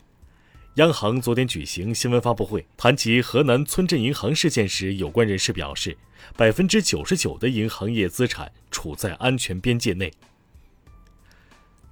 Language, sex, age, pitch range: Chinese, male, 30-49, 100-145 Hz